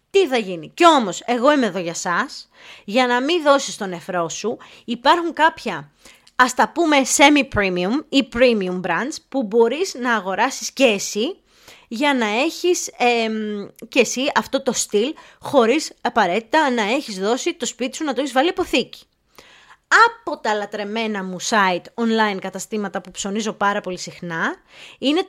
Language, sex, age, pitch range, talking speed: Greek, female, 20-39, 205-285 Hz, 155 wpm